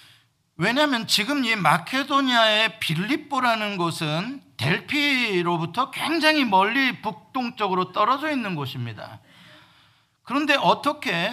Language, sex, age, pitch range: Korean, male, 50-69, 160-250 Hz